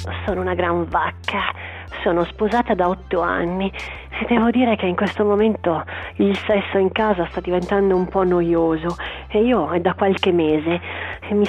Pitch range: 170-205 Hz